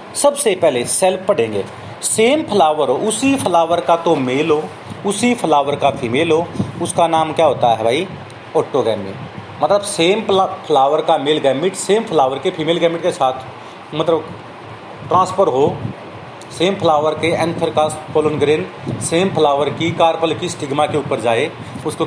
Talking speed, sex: 150 wpm, male